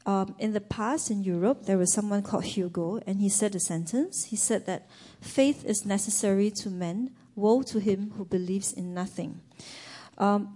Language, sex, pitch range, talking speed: English, female, 190-220 Hz, 180 wpm